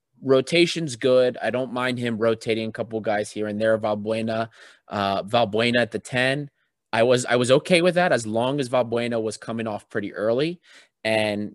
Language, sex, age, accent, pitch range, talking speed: English, male, 20-39, American, 110-140 Hz, 185 wpm